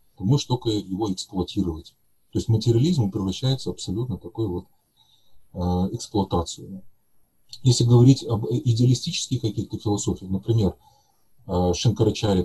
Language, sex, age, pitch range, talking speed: Russian, male, 30-49, 100-125 Hz, 105 wpm